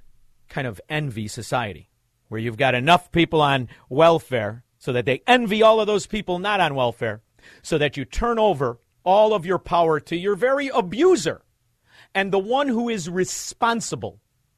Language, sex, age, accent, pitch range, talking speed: English, male, 50-69, American, 120-195 Hz, 170 wpm